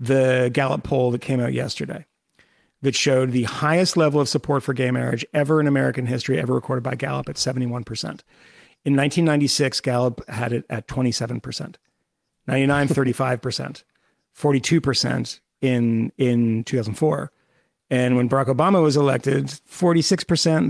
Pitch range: 125-155 Hz